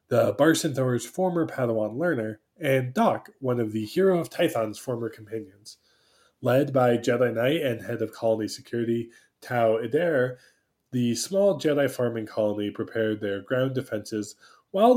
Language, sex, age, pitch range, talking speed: English, male, 20-39, 110-150 Hz, 145 wpm